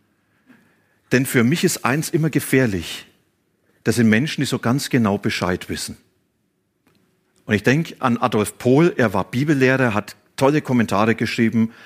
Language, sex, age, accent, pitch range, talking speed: German, male, 40-59, German, 110-135 Hz, 145 wpm